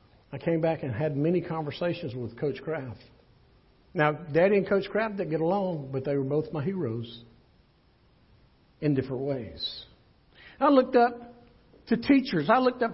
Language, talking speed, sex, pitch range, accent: English, 160 wpm, male, 145-225 Hz, American